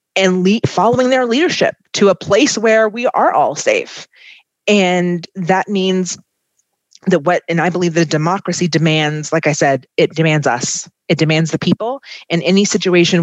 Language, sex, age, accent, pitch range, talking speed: English, female, 30-49, American, 160-190 Hz, 170 wpm